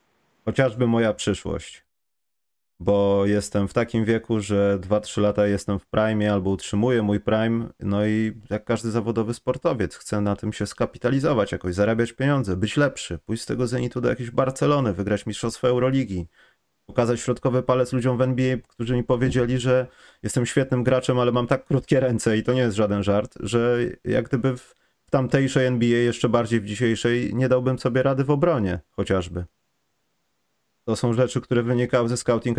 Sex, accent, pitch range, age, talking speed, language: male, native, 100-125 Hz, 30-49, 170 wpm, Polish